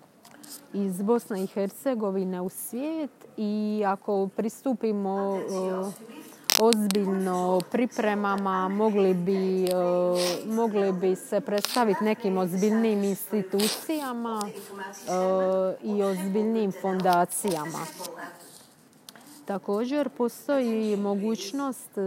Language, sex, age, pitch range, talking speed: Croatian, female, 30-49, 185-225 Hz, 75 wpm